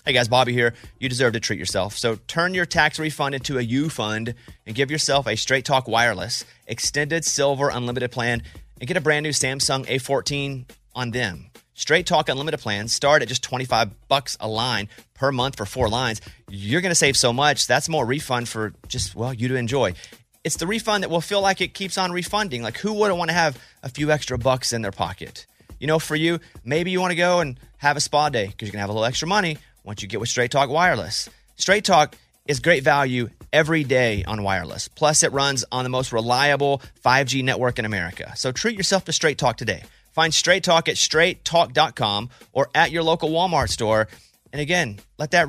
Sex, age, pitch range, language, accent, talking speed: male, 30-49, 120-165 Hz, English, American, 210 wpm